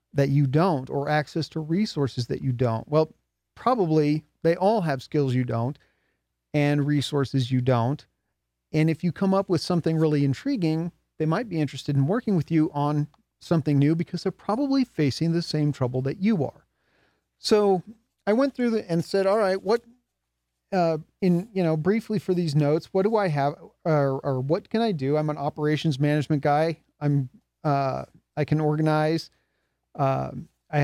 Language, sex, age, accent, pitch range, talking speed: English, male, 40-59, American, 140-175 Hz, 180 wpm